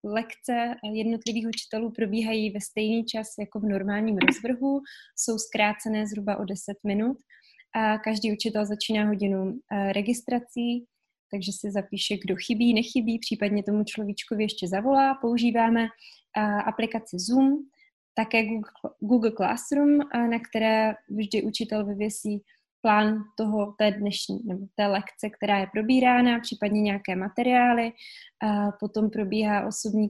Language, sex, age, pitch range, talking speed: Czech, female, 20-39, 205-230 Hz, 120 wpm